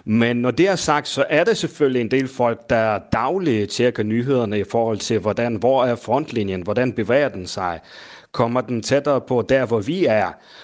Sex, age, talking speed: male, 30-49, 195 wpm